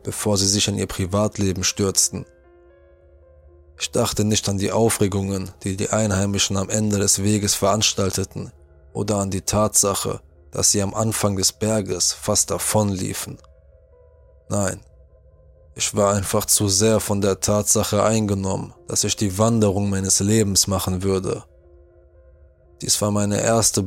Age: 20-39